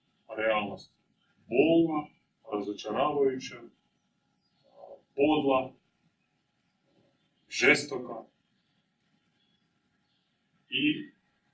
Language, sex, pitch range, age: Croatian, male, 115-150 Hz, 30-49